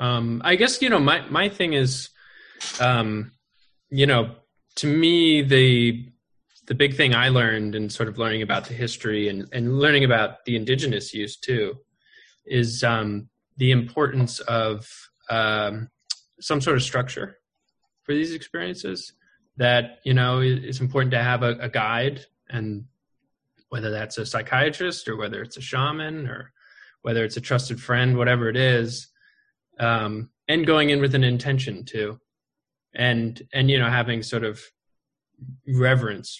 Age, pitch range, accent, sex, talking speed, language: 20-39, 110-135 Hz, American, male, 155 wpm, English